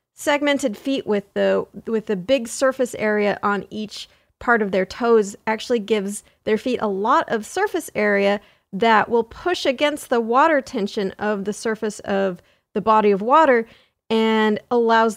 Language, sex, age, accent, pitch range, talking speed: English, female, 30-49, American, 195-245 Hz, 160 wpm